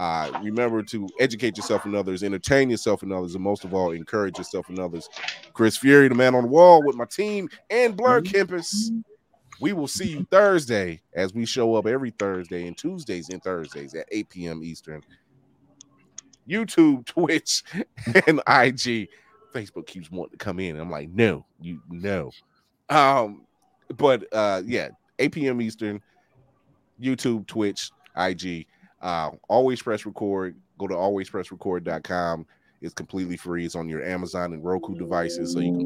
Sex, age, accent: male, 30-49, American